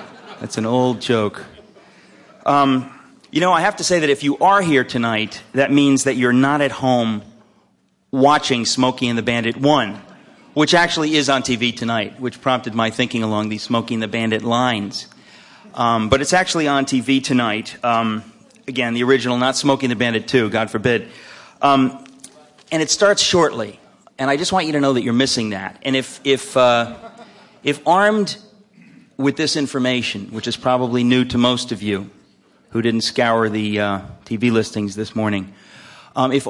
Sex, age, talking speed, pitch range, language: male, 40-59, 180 wpm, 110-140 Hz, English